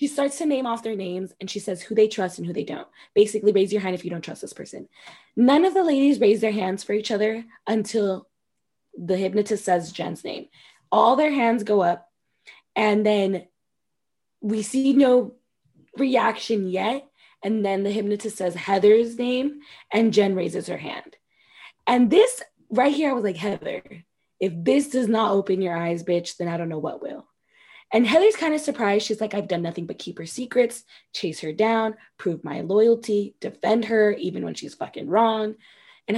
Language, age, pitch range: English, 20-39, 190-245 Hz